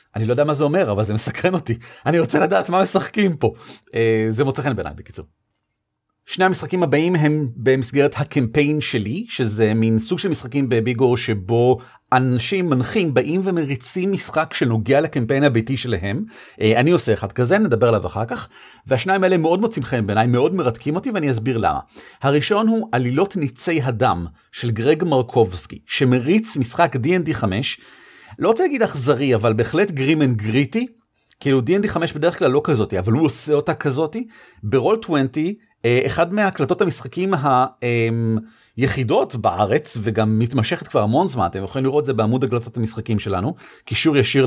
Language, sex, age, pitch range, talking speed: Hebrew, male, 40-59, 120-180 Hz, 160 wpm